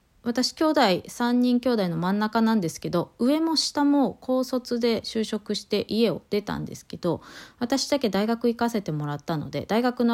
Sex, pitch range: female, 180-245 Hz